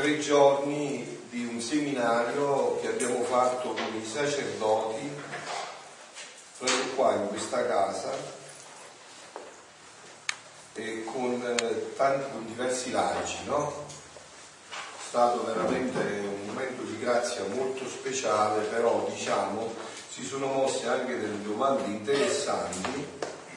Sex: male